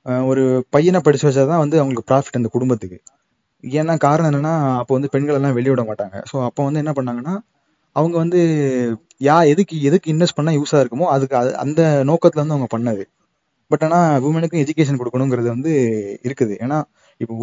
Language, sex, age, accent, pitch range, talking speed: Tamil, male, 20-39, native, 120-150 Hz, 160 wpm